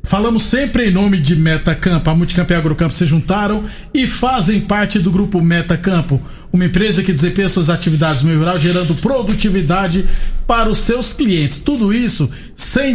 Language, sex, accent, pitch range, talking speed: Portuguese, male, Brazilian, 170-215 Hz, 170 wpm